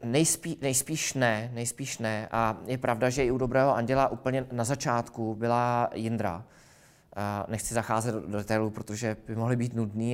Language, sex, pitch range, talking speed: Czech, male, 110-125 Hz, 160 wpm